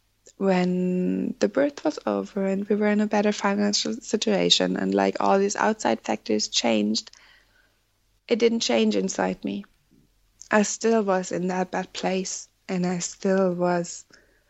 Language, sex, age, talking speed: English, female, 20-39, 150 wpm